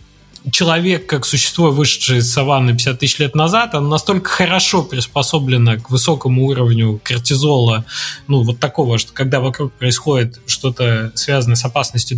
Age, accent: 20-39, native